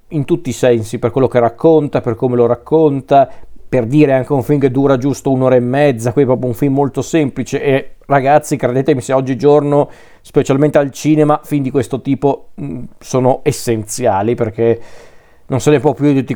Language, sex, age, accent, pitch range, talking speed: Italian, male, 40-59, native, 125-145 Hz, 185 wpm